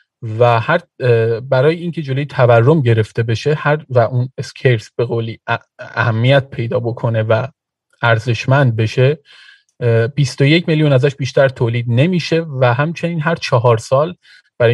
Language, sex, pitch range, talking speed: Persian, male, 115-140 Hz, 130 wpm